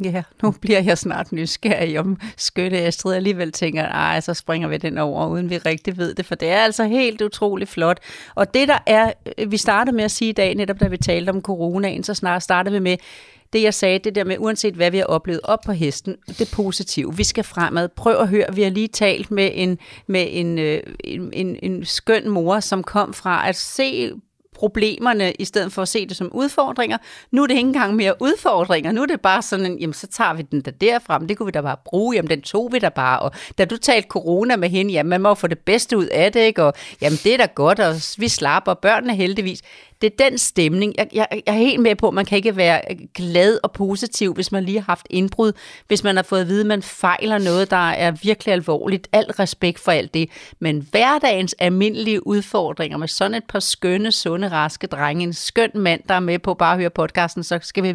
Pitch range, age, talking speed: 175-215 Hz, 40-59, 235 wpm